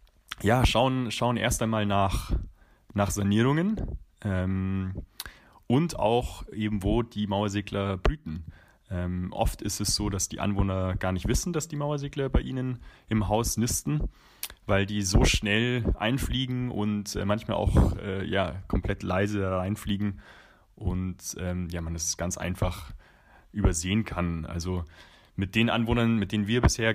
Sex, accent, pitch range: male, German, 90-110 Hz